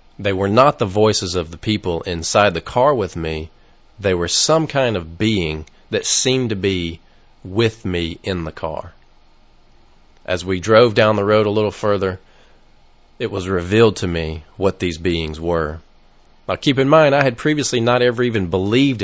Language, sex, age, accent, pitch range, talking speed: English, male, 40-59, American, 90-115 Hz, 180 wpm